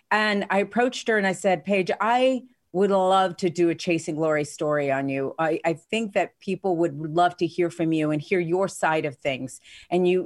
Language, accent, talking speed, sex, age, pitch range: English, American, 220 wpm, female, 40-59, 170-200 Hz